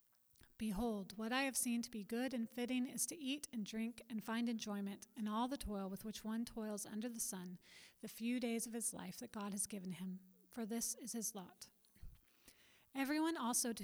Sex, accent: female, American